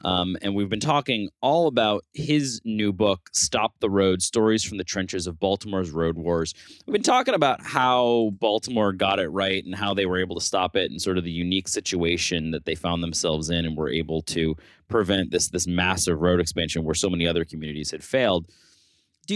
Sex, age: male, 20-39